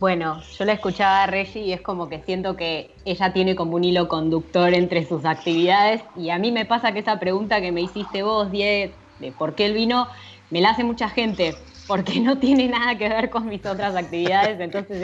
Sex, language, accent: female, Spanish, Argentinian